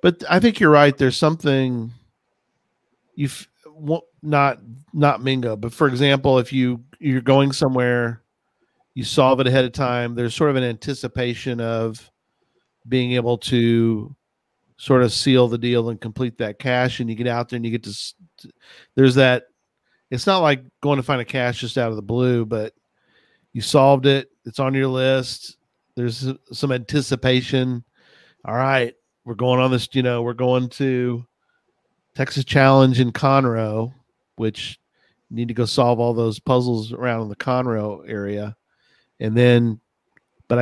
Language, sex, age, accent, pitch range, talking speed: English, male, 40-59, American, 115-135 Hz, 160 wpm